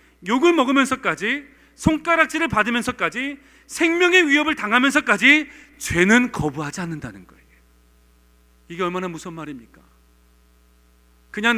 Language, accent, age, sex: Korean, native, 40-59, male